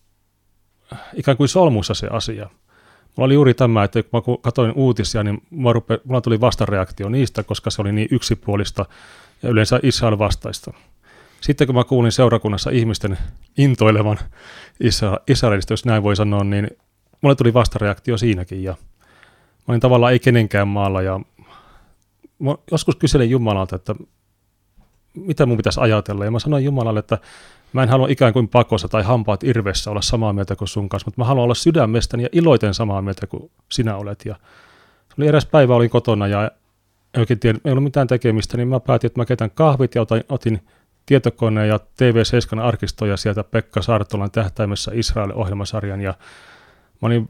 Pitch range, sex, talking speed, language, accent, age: 100-125 Hz, male, 160 wpm, Finnish, native, 30-49